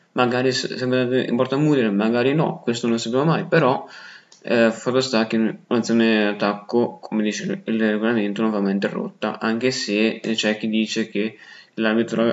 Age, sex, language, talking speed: 20-39, male, Italian, 170 wpm